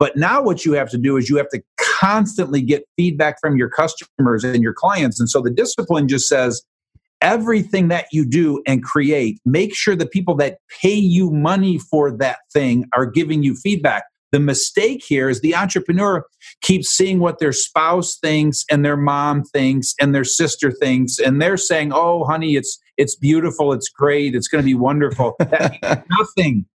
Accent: American